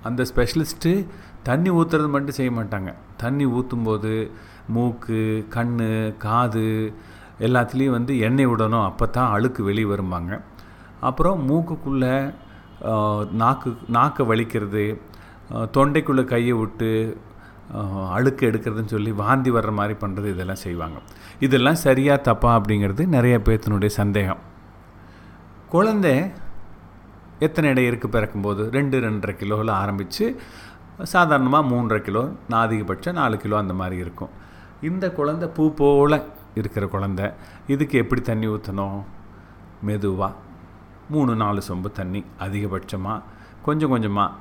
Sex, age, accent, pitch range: male, 40-59, native, 100-130 Hz